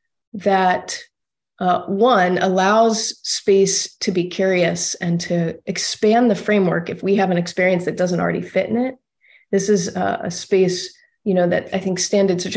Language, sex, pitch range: English, female, 180-215 Hz